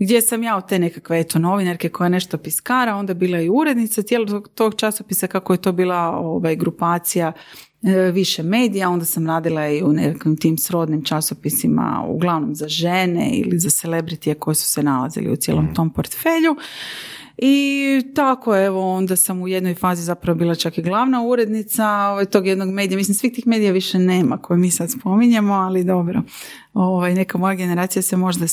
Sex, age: female, 30-49